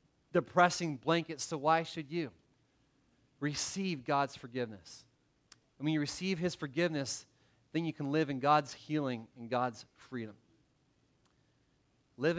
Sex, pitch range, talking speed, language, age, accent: male, 135-170 Hz, 125 wpm, English, 30-49, American